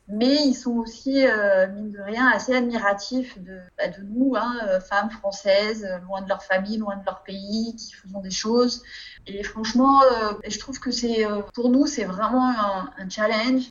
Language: French